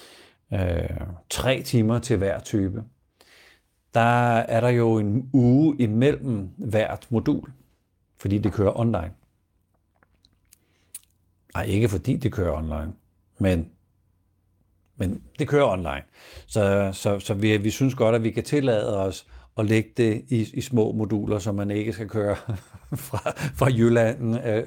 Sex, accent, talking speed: male, native, 140 wpm